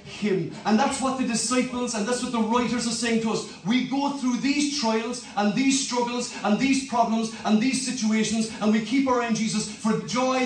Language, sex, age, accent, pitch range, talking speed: English, male, 40-59, British, 180-240 Hz, 210 wpm